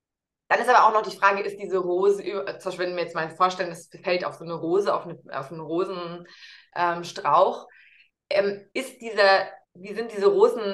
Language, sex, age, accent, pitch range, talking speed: German, female, 20-39, German, 175-235 Hz, 190 wpm